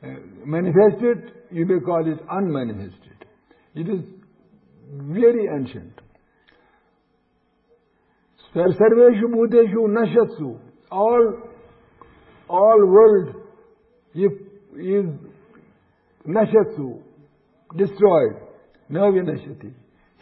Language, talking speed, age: English, 70 wpm, 60-79